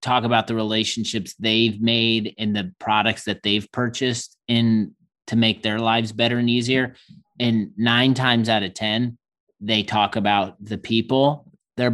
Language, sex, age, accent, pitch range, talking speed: English, male, 30-49, American, 110-125 Hz, 160 wpm